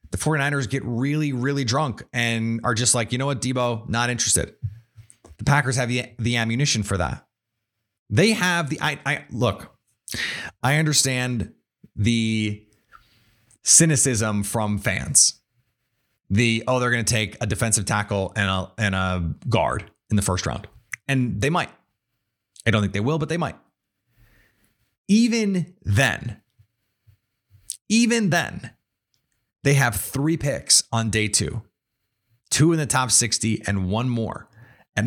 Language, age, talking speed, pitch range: English, 30-49, 145 wpm, 105-130 Hz